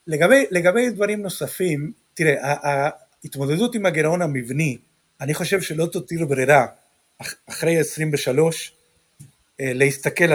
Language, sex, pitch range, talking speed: Hebrew, male, 145-200 Hz, 100 wpm